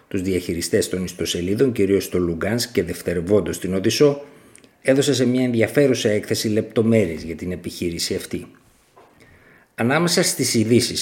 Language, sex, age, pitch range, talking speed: Greek, male, 50-69, 95-125 Hz, 130 wpm